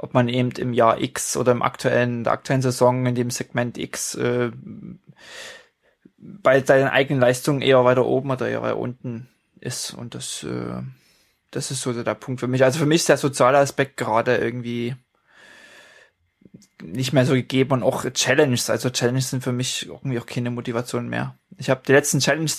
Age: 20-39